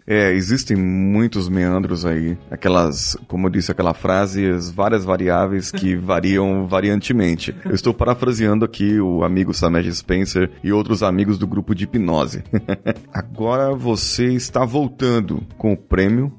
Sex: male